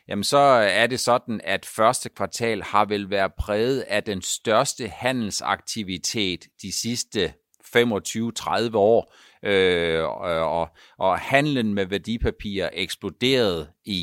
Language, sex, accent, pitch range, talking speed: Danish, male, native, 100-130 Hz, 110 wpm